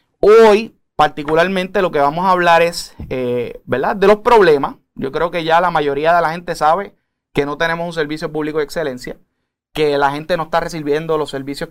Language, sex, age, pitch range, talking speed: Spanish, male, 30-49, 140-185 Hz, 195 wpm